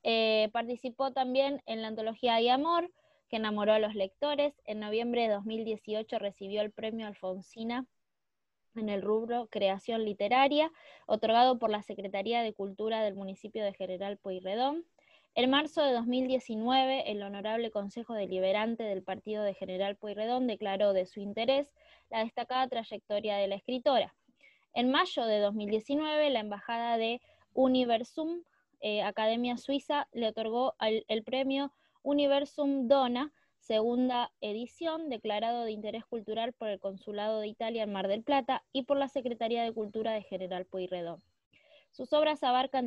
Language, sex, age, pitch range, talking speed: Spanish, female, 20-39, 210-265 Hz, 145 wpm